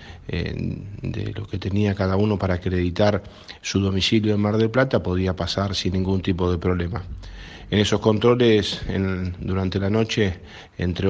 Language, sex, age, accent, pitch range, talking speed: Spanish, male, 40-59, Argentinian, 95-105 Hz, 150 wpm